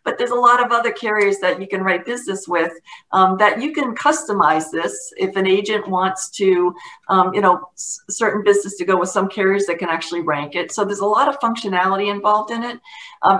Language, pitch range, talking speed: English, 175-210 Hz, 220 wpm